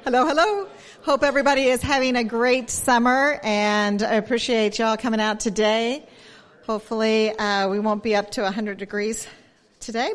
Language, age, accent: English, 40-59, American